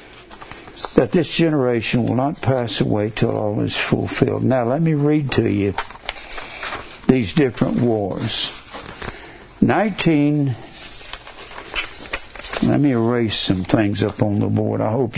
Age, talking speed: 60-79, 125 wpm